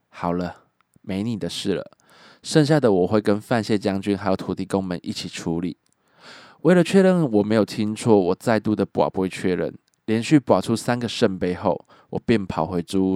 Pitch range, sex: 95-120 Hz, male